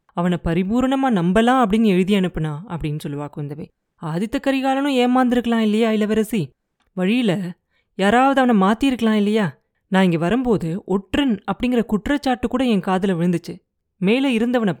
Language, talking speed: Tamil, 120 wpm